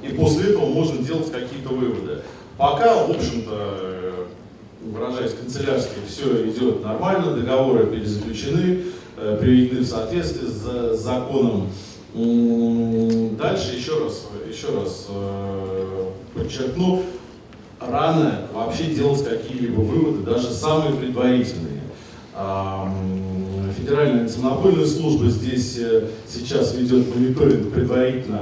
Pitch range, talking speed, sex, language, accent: 110-140 Hz, 95 wpm, male, Russian, native